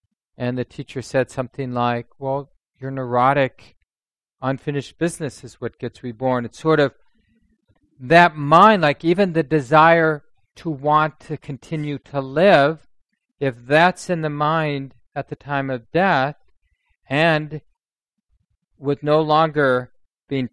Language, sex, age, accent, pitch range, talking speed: English, male, 40-59, American, 125-155 Hz, 130 wpm